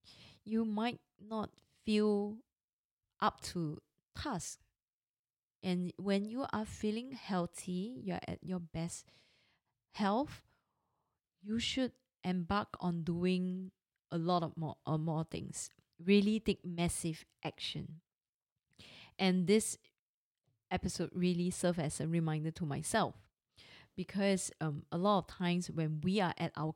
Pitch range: 160-195 Hz